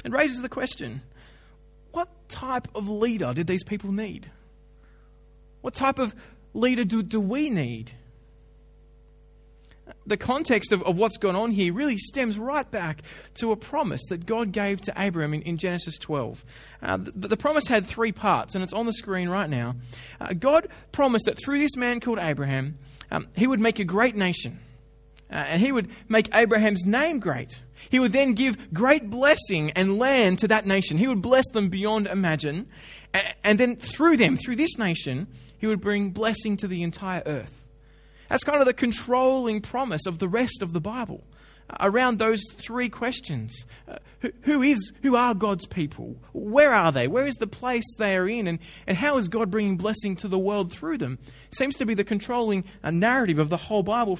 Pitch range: 175-245 Hz